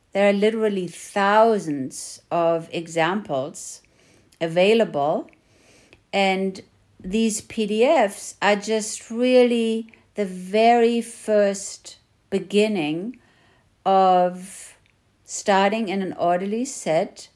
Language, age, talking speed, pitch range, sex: English, 60-79, 80 wpm, 170-210 Hz, female